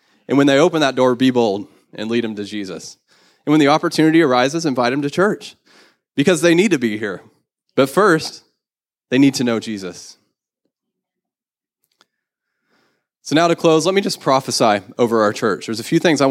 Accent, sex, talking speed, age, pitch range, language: American, male, 190 wpm, 20-39, 110-145 Hz, English